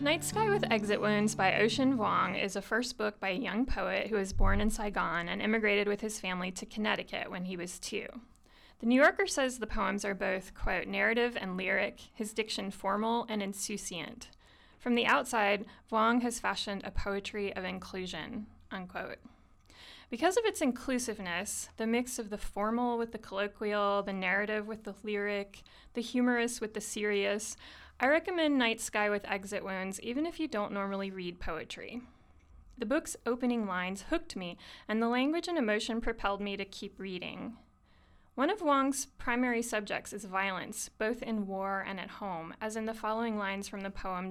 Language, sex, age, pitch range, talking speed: English, female, 20-39, 195-235 Hz, 180 wpm